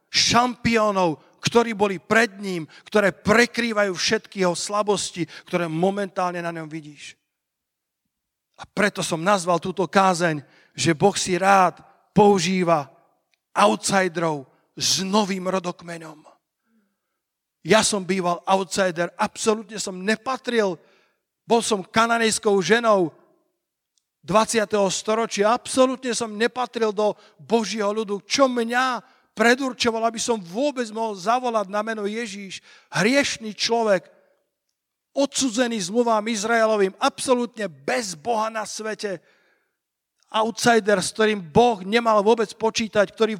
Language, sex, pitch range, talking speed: Slovak, male, 190-230 Hz, 110 wpm